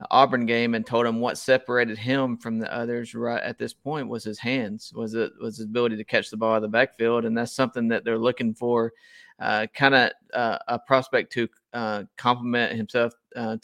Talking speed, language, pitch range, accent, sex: 215 wpm, English, 115-125 Hz, American, male